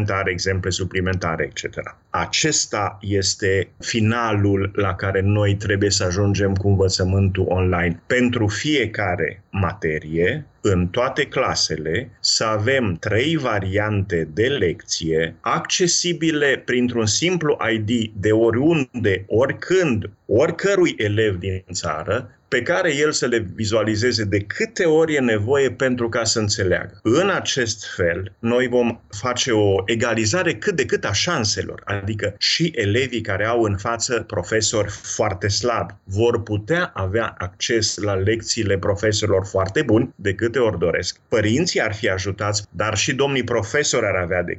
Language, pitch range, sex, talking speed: Romanian, 95-115 Hz, male, 135 wpm